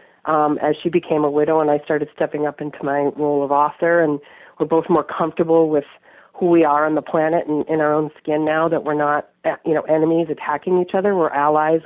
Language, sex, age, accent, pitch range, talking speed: English, female, 40-59, American, 150-190 Hz, 230 wpm